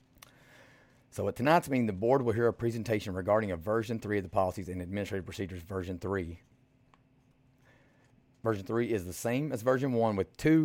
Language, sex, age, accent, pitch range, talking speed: English, male, 40-59, American, 110-130 Hz, 180 wpm